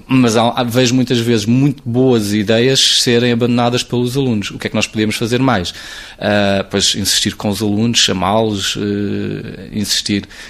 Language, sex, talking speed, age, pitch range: Portuguese, male, 160 wpm, 20-39, 105-125 Hz